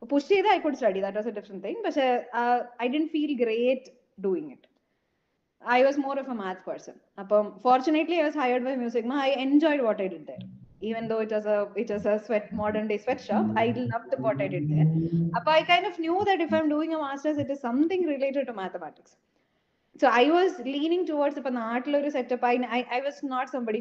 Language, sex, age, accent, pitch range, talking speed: Malayalam, female, 20-39, native, 200-280 Hz, 230 wpm